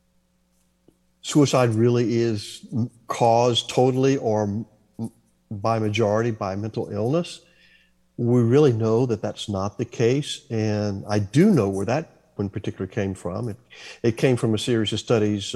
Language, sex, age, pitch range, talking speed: English, male, 50-69, 105-125 Hz, 145 wpm